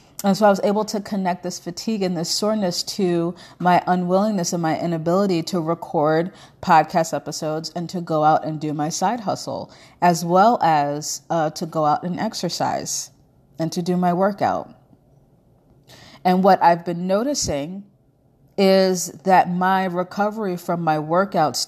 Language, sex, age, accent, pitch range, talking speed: English, female, 30-49, American, 150-180 Hz, 160 wpm